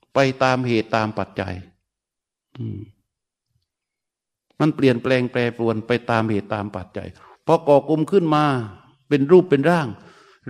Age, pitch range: 60-79, 125-175 Hz